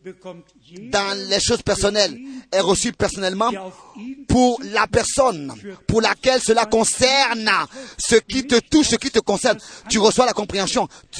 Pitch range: 190-250 Hz